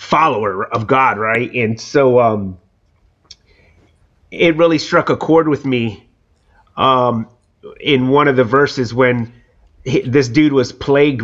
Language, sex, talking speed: English, male, 135 wpm